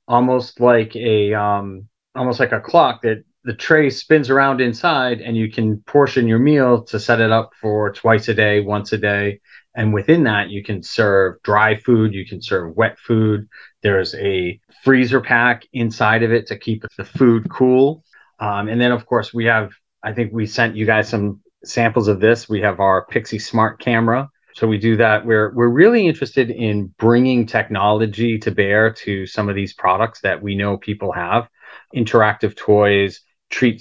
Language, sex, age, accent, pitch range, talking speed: English, male, 30-49, American, 100-115 Hz, 185 wpm